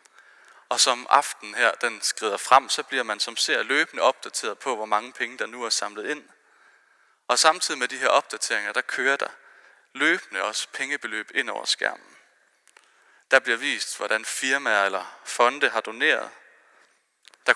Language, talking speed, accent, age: Danish, 165 wpm, native, 30-49